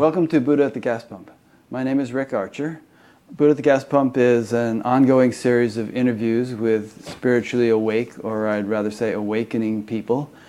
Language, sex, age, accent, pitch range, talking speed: English, male, 30-49, American, 110-130 Hz, 185 wpm